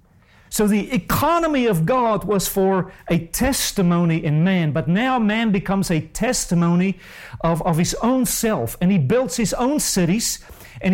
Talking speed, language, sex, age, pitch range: 160 wpm, English, male, 50-69, 160-225 Hz